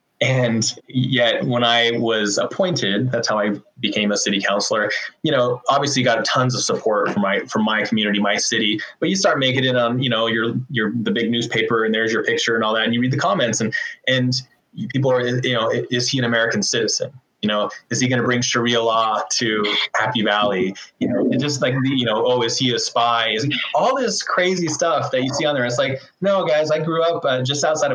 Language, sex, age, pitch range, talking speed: English, male, 20-39, 115-135 Hz, 230 wpm